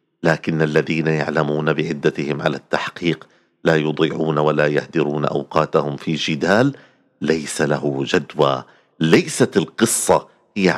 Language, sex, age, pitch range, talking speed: Arabic, male, 50-69, 75-105 Hz, 105 wpm